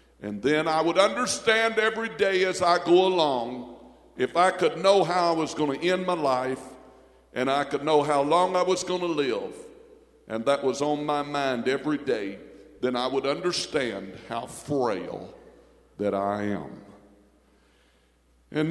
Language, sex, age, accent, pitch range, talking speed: English, male, 60-79, American, 105-150 Hz, 165 wpm